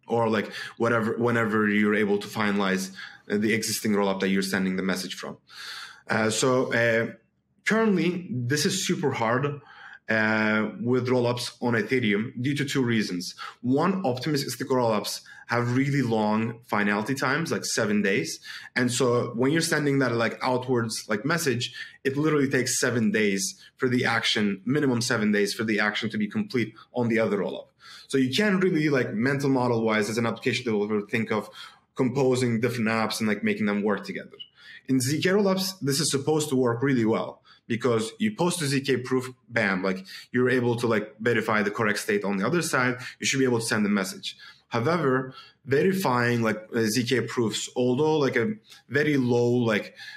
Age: 20-39